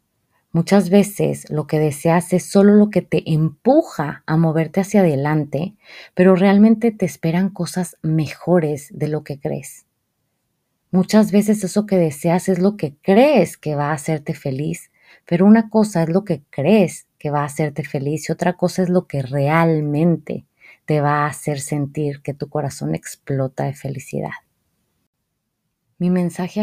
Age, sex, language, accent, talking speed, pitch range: 30-49, female, Spanish, Mexican, 160 wpm, 155-190 Hz